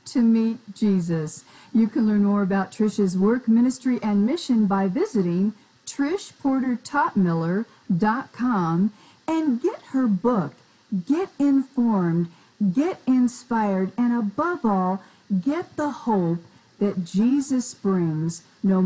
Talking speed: 110 wpm